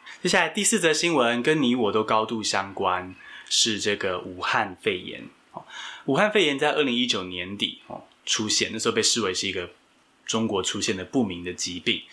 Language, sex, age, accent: Chinese, male, 20-39, native